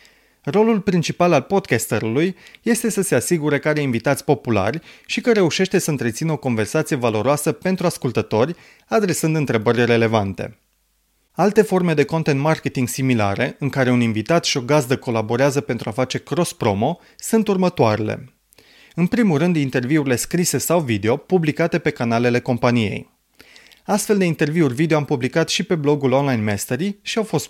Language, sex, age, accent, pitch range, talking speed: Romanian, male, 30-49, native, 120-175 Hz, 155 wpm